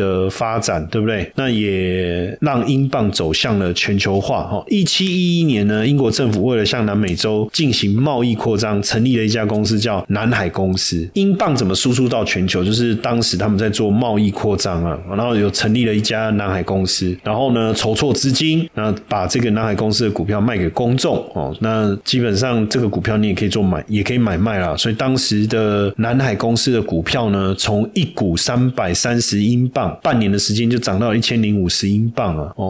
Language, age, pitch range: Chinese, 20-39, 100-120 Hz